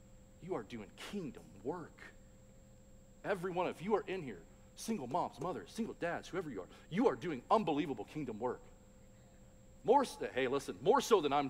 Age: 40-59